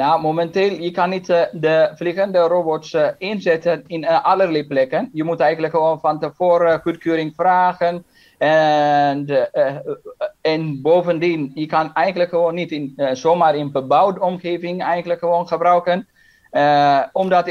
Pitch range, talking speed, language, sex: 155-180 Hz, 135 wpm, Dutch, male